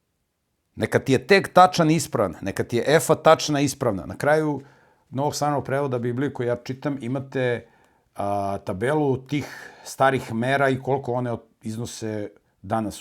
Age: 50-69